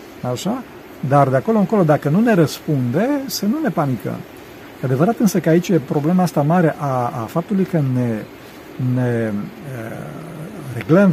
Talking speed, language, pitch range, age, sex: 155 wpm, Romanian, 140-180 Hz, 50-69, male